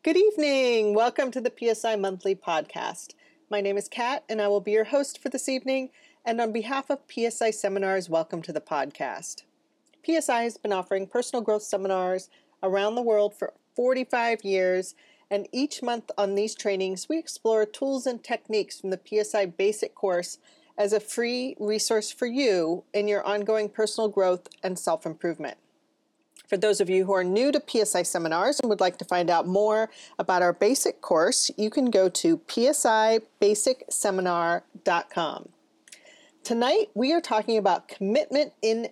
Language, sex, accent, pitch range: English, female, American, 200-255 Hz